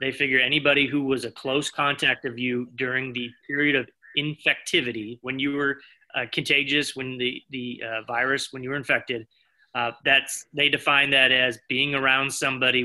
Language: English